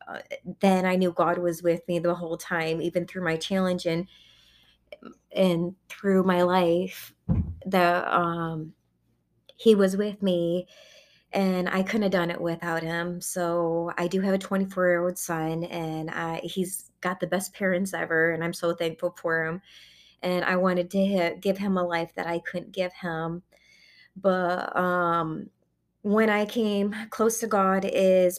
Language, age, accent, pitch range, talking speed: English, 20-39, American, 165-185 Hz, 165 wpm